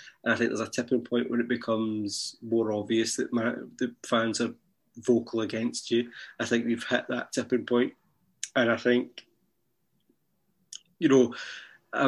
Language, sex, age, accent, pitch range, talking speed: English, male, 20-39, British, 115-120 Hz, 155 wpm